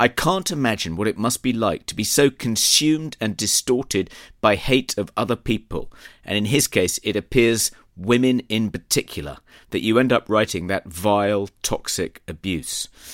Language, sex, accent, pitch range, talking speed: English, male, British, 90-115 Hz, 170 wpm